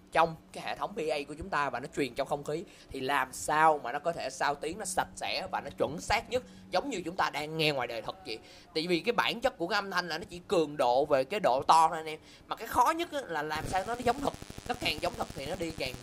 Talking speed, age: 300 wpm, 20-39